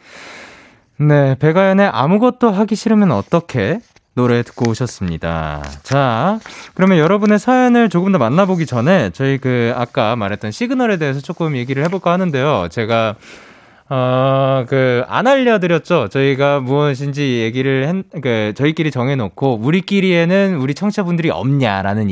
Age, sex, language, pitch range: 20-39, male, Korean, 125-210 Hz